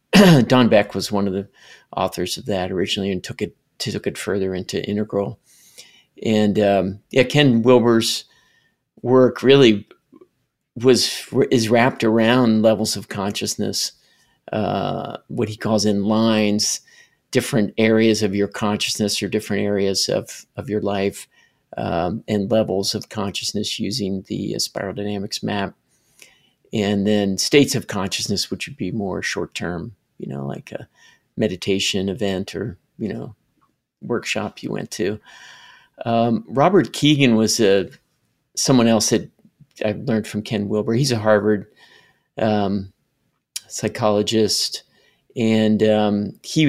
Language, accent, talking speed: English, American, 135 wpm